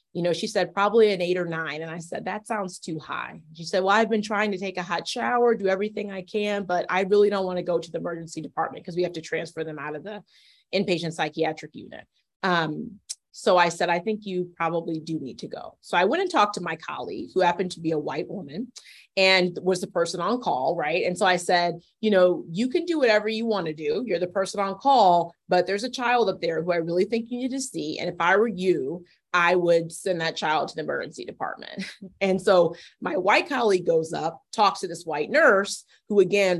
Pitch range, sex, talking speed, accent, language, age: 170-220 Hz, female, 240 wpm, American, English, 30-49